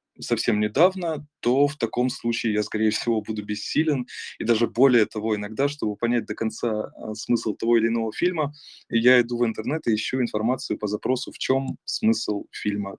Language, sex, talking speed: Russian, male, 175 wpm